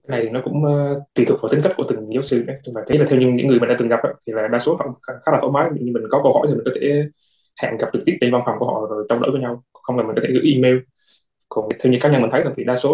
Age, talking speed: 20-39, 345 wpm